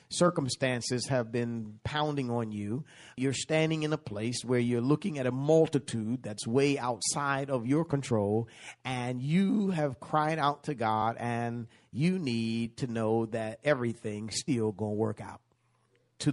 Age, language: 50-69, English